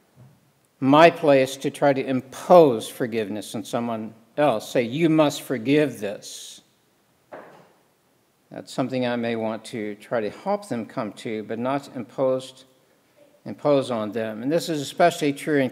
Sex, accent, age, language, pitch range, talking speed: male, American, 60-79, English, 125-150 Hz, 145 wpm